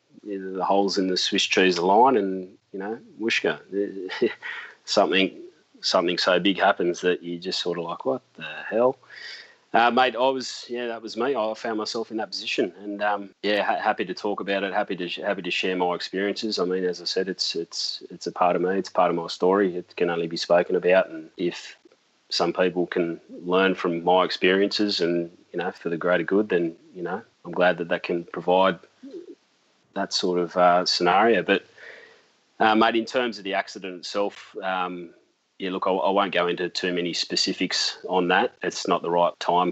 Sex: male